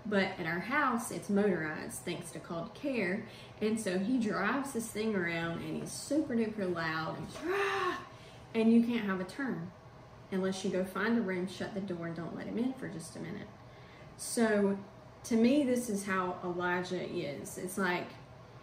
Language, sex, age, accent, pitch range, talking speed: English, female, 30-49, American, 175-210 Hz, 190 wpm